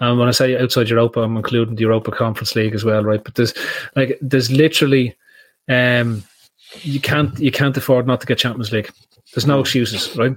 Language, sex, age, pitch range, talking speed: English, male, 30-49, 115-135 Hz, 205 wpm